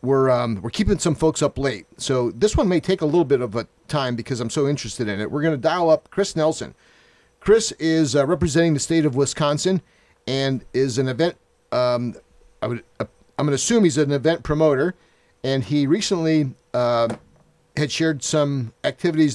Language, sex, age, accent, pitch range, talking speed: English, male, 50-69, American, 125-165 Hz, 200 wpm